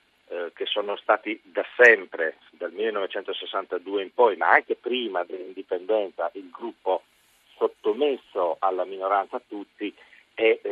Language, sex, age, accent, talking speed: Italian, male, 50-69, native, 110 wpm